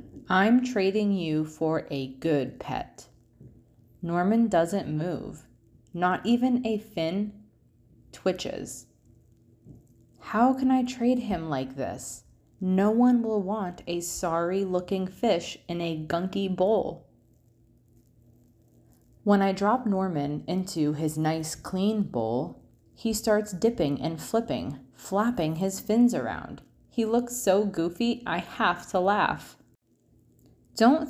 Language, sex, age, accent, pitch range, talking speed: English, female, 20-39, American, 145-215 Hz, 120 wpm